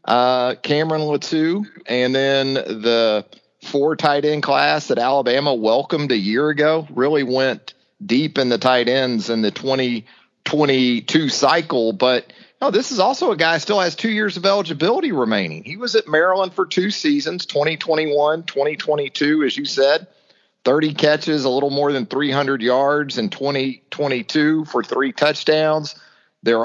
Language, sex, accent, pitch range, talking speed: English, male, American, 130-160 Hz, 155 wpm